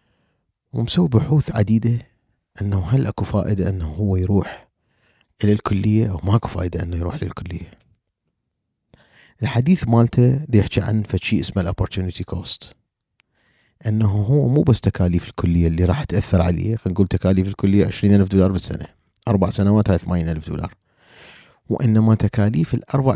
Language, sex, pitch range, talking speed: Arabic, male, 95-120 Hz, 130 wpm